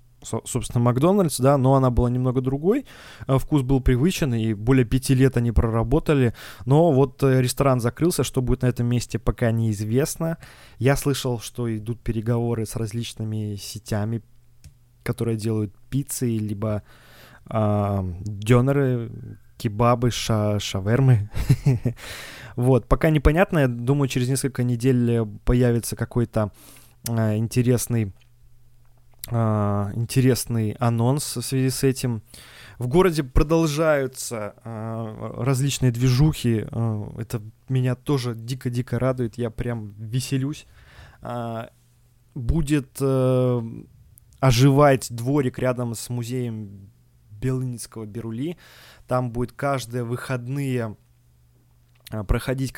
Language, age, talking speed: Russian, 20-39, 100 wpm